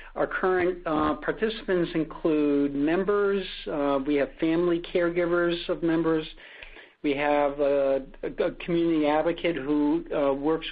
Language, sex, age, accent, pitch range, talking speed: English, male, 60-79, American, 145-175 Hz, 130 wpm